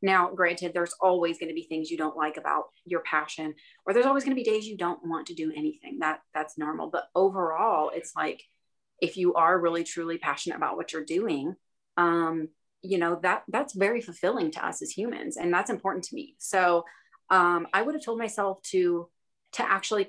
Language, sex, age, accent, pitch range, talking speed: English, female, 30-49, American, 165-210 Hz, 205 wpm